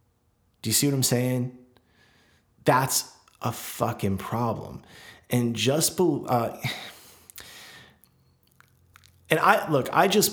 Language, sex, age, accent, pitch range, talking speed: English, male, 30-49, American, 105-120 Hz, 105 wpm